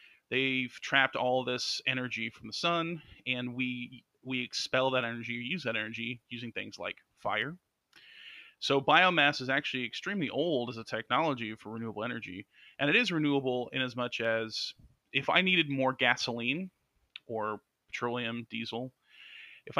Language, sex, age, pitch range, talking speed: English, male, 30-49, 120-145 Hz, 150 wpm